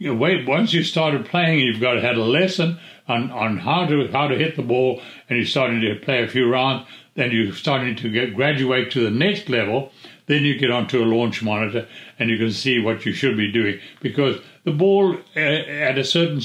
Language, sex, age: English, male, 60-79